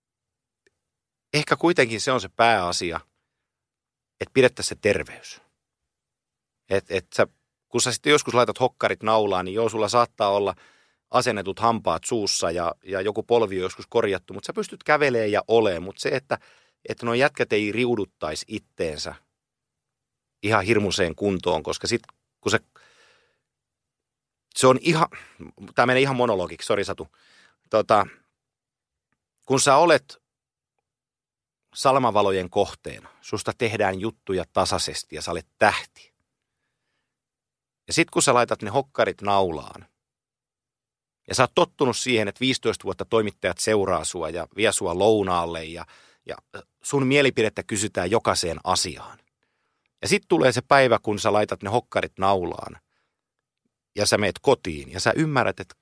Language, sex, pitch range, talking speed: Finnish, male, 100-130 Hz, 140 wpm